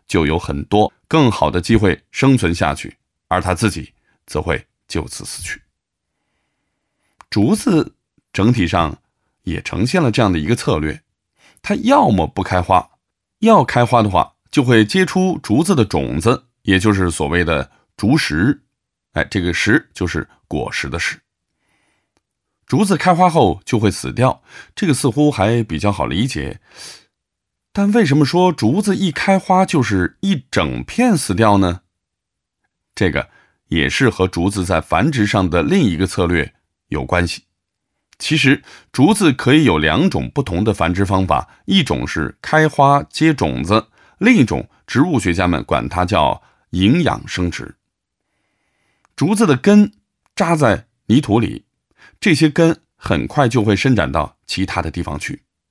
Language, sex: English, male